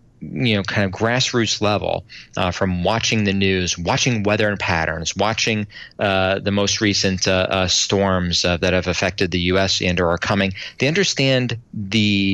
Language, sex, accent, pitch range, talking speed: English, male, American, 95-125 Hz, 180 wpm